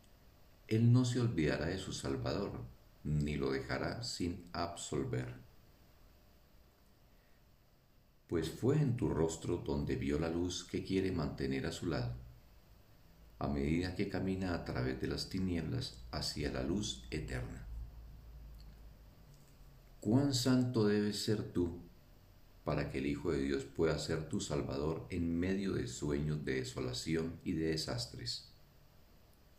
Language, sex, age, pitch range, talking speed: Spanish, male, 50-69, 70-100 Hz, 130 wpm